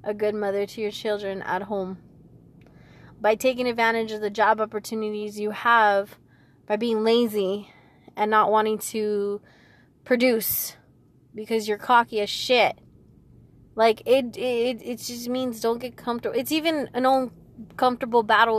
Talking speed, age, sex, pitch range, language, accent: 140 wpm, 20-39, female, 205-235 Hz, English, American